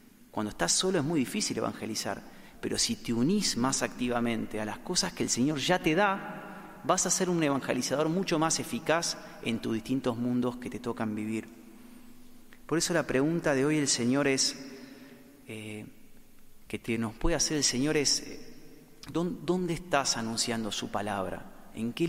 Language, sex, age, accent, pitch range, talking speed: Spanish, male, 30-49, Argentinian, 120-165 Hz, 170 wpm